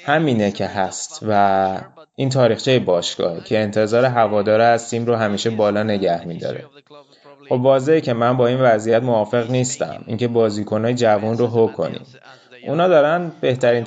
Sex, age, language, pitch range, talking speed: male, 20-39, Persian, 105-135 Hz, 150 wpm